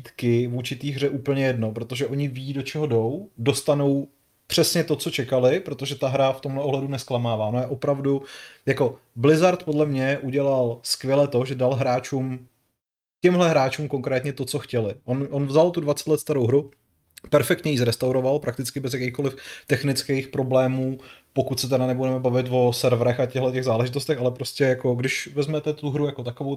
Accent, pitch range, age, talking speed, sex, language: native, 125-140 Hz, 30-49, 175 wpm, male, Czech